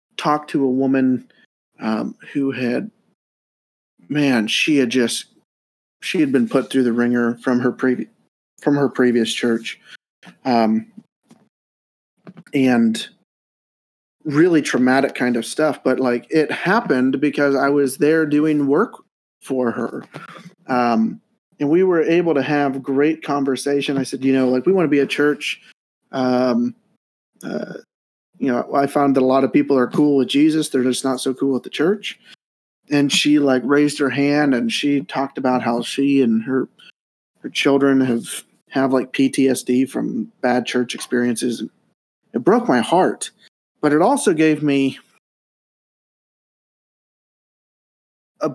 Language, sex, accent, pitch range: English, male, American, 125-150 Hz